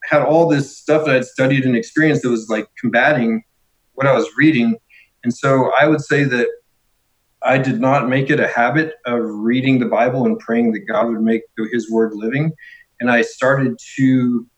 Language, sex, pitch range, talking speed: English, male, 115-140 Hz, 195 wpm